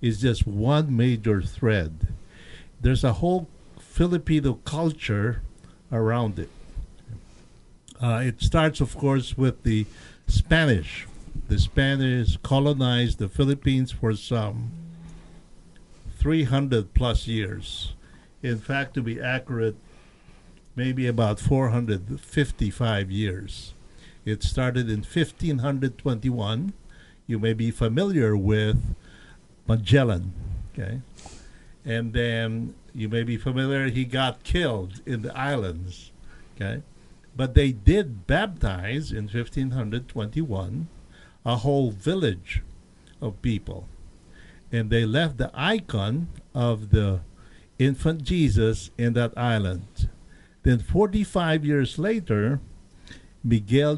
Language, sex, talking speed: English, male, 100 wpm